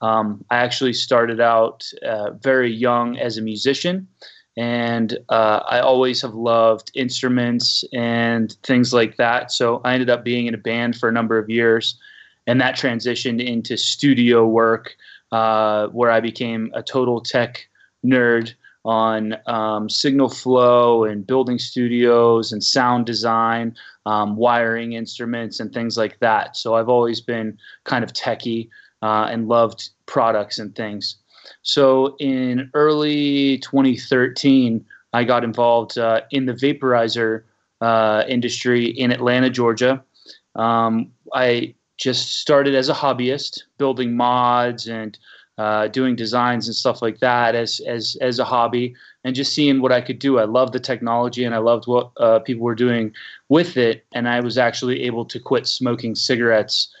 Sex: male